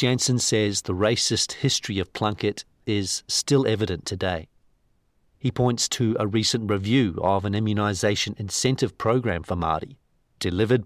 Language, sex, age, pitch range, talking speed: English, male, 40-59, 100-125 Hz, 140 wpm